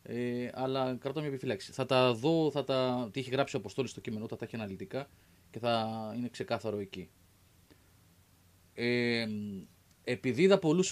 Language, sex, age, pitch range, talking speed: Greek, male, 30-49, 100-135 Hz, 165 wpm